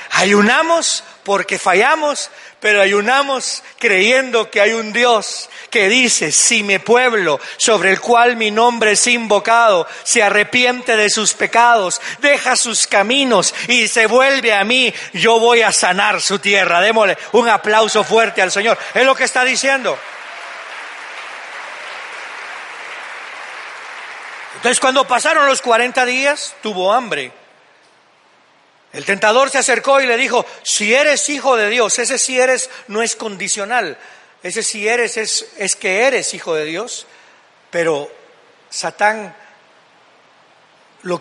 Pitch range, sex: 210-260 Hz, male